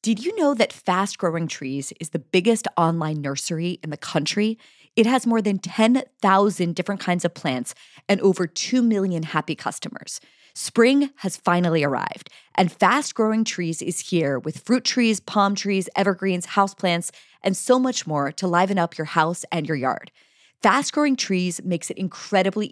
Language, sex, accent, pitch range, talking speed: English, female, American, 165-220 Hz, 165 wpm